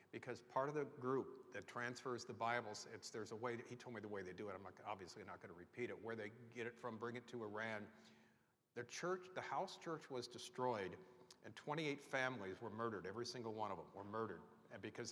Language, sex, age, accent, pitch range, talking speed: English, male, 50-69, American, 110-125 Hz, 225 wpm